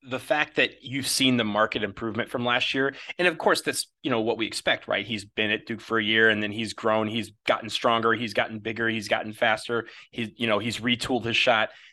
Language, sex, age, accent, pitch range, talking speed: English, male, 30-49, American, 110-130 Hz, 240 wpm